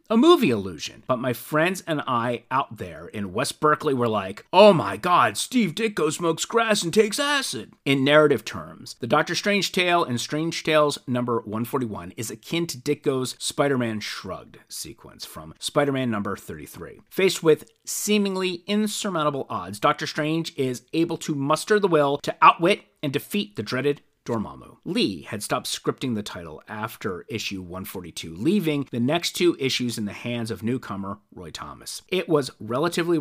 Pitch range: 115-160 Hz